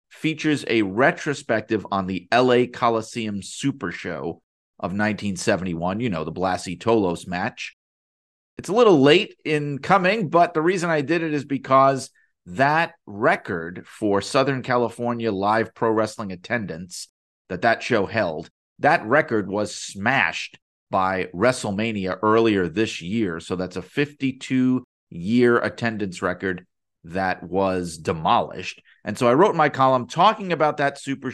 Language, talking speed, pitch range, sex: English, 140 wpm, 100-135 Hz, male